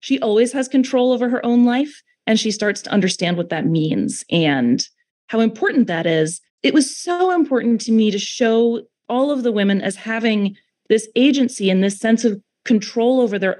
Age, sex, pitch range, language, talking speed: 30-49, female, 185-245 Hz, English, 195 wpm